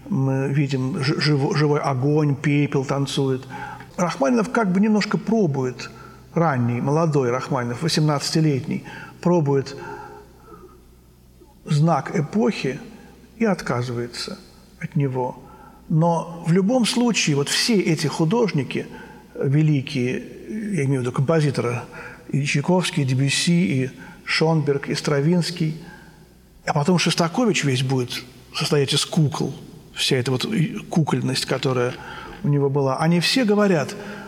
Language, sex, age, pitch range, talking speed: Russian, male, 50-69, 140-185 Hz, 110 wpm